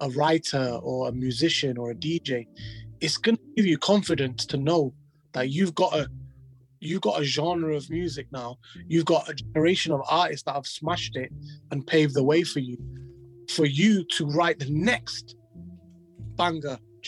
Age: 20-39